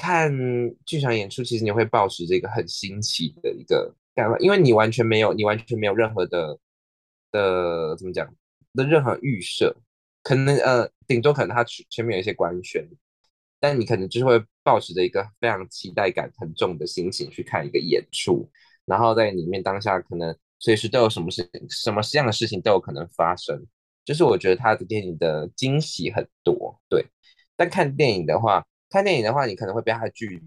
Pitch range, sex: 95-140 Hz, male